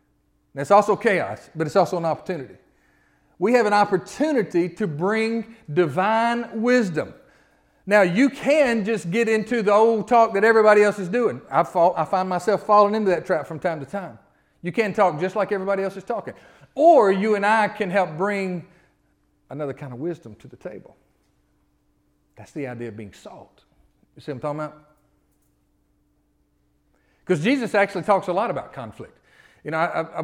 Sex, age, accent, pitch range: male, 40-59, American, 150-205 Hz